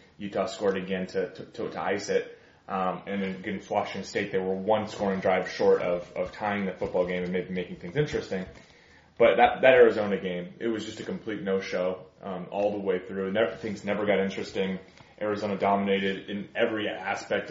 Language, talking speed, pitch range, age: English, 200 wpm, 95-110 Hz, 20-39